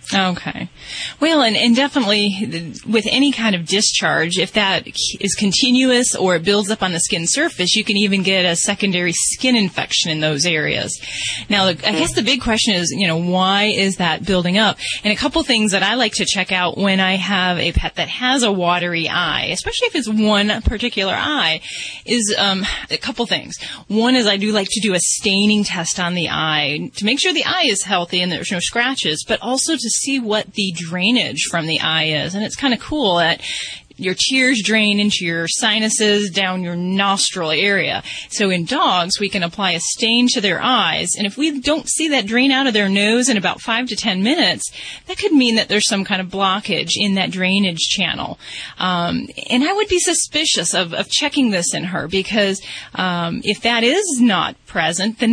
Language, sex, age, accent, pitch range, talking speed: English, female, 20-39, American, 180-235 Hz, 205 wpm